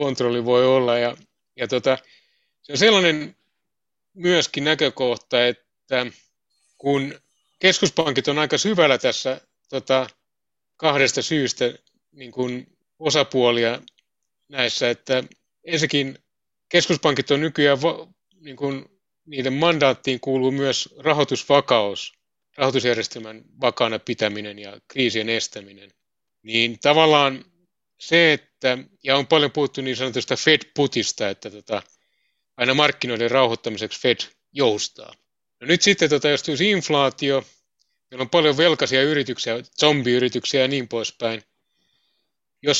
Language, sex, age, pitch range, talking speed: Finnish, male, 30-49, 120-150 Hz, 100 wpm